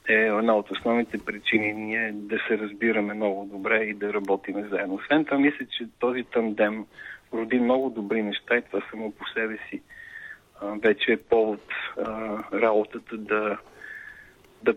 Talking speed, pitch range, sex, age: 155 wpm, 105-120 Hz, male, 40-59